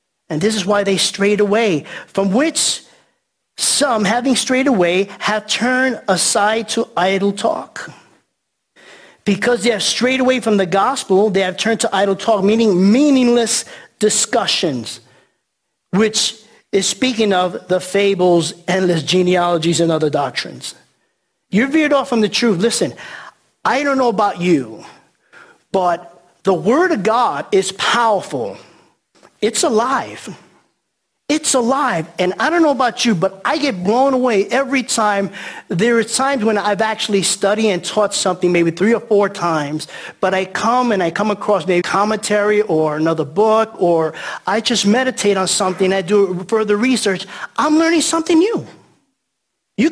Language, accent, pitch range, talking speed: English, American, 190-250 Hz, 150 wpm